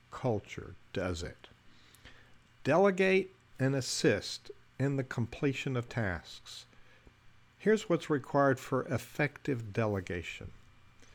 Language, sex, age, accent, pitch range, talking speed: English, male, 60-79, American, 115-150 Hz, 90 wpm